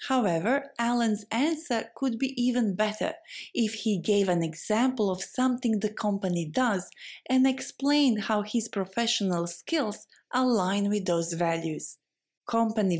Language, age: Thai, 30-49